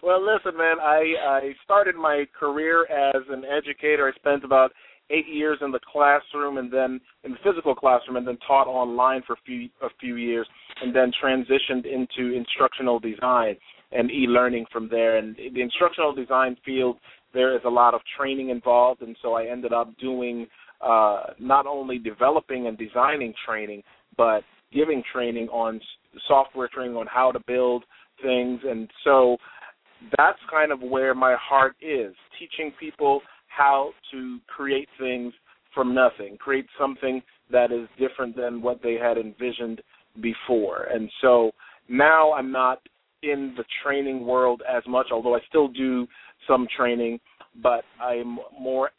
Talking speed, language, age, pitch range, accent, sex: 155 wpm, English, 30-49, 120-140 Hz, American, male